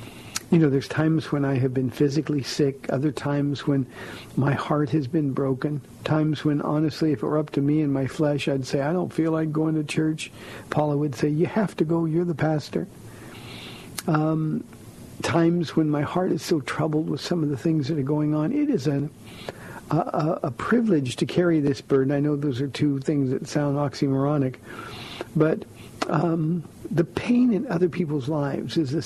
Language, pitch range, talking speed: English, 135-160 Hz, 195 wpm